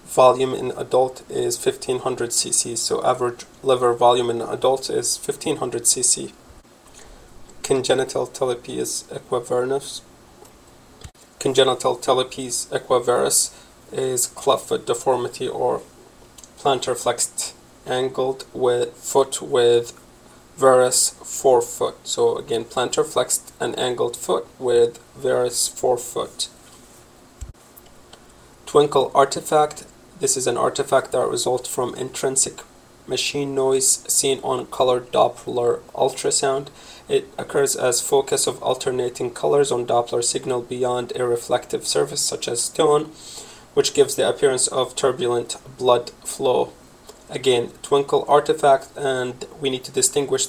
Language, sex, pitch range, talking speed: English, male, 125-160 Hz, 110 wpm